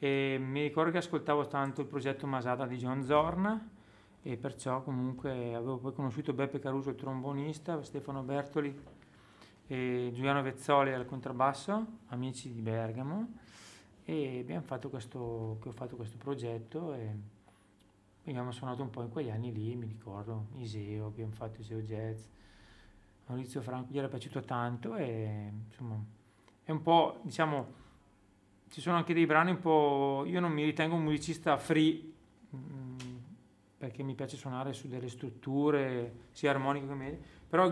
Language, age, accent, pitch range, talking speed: Italian, 30-49, native, 125-160 Hz, 150 wpm